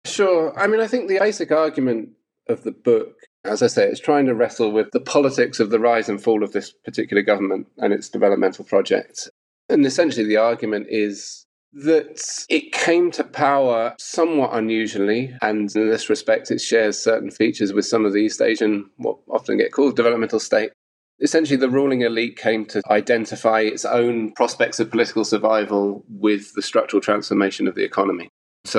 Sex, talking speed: male, 180 wpm